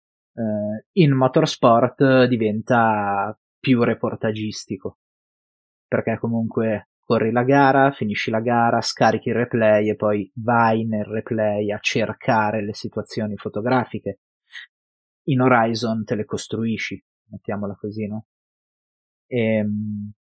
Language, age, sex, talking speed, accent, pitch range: Italian, 30-49, male, 105 wpm, native, 105-120 Hz